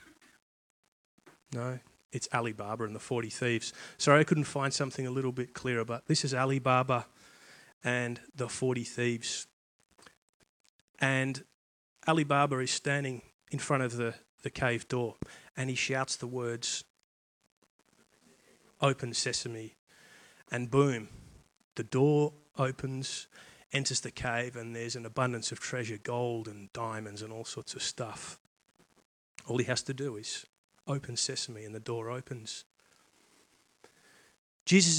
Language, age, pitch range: English, 30-49, 115-135 Hz